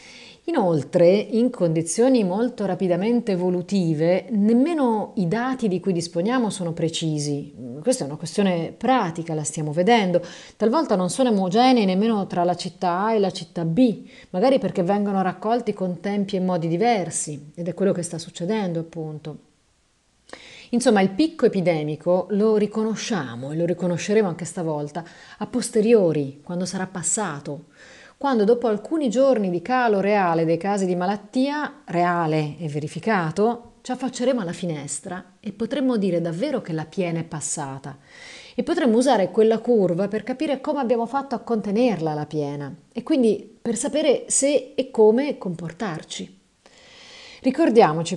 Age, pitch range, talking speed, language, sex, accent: 30-49, 170-235 Hz, 145 wpm, Italian, female, native